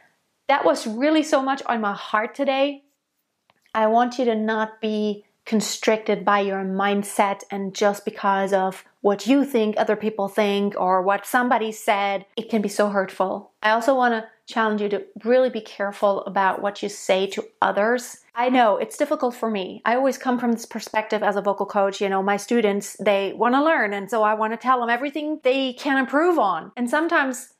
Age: 30-49